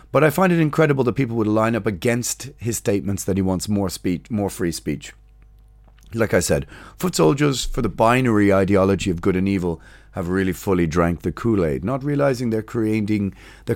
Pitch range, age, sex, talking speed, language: 95-130 Hz, 30-49, male, 195 wpm, English